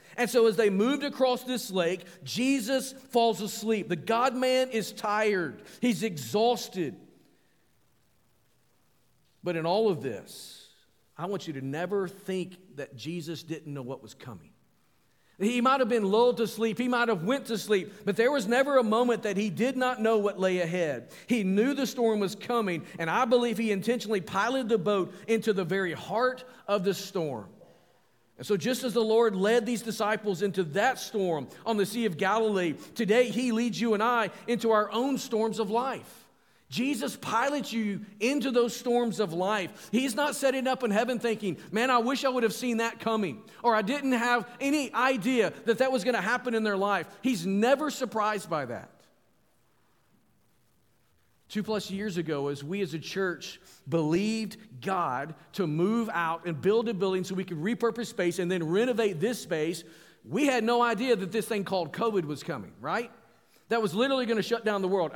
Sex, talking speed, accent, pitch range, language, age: male, 190 wpm, American, 190-240 Hz, English, 50-69